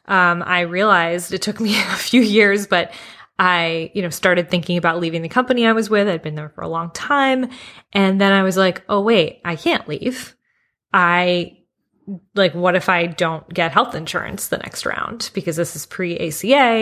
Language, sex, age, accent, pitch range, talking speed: English, female, 20-39, American, 165-195 Hz, 195 wpm